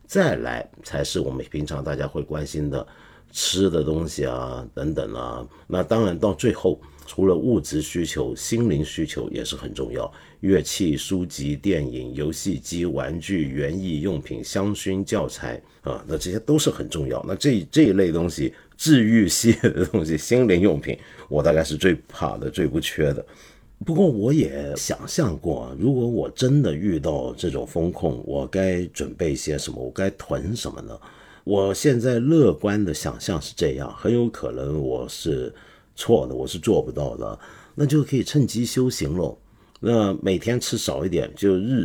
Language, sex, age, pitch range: Chinese, male, 50-69, 75-110 Hz